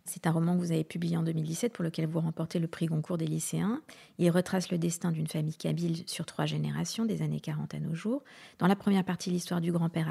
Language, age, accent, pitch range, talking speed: French, 40-59, French, 170-200 Hz, 245 wpm